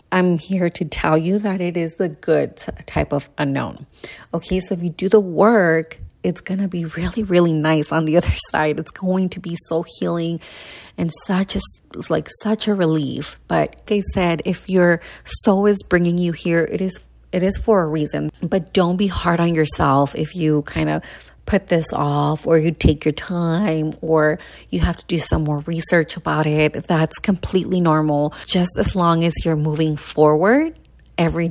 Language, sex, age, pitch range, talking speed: English, female, 30-49, 155-195 Hz, 190 wpm